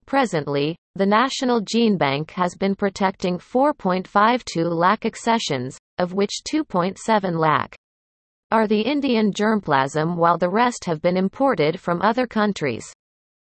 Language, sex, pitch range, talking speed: English, female, 170-230 Hz, 125 wpm